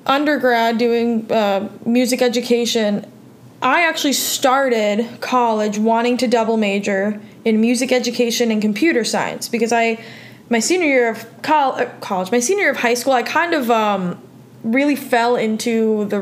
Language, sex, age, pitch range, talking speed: English, female, 20-39, 215-250 Hz, 155 wpm